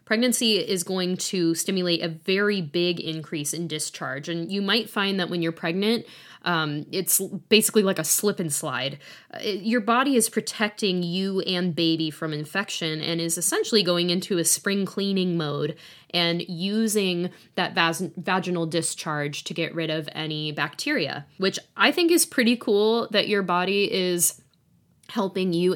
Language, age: English, 10-29